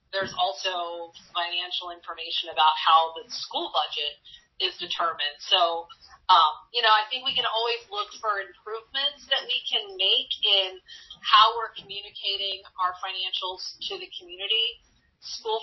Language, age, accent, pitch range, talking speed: English, 40-59, American, 170-215 Hz, 140 wpm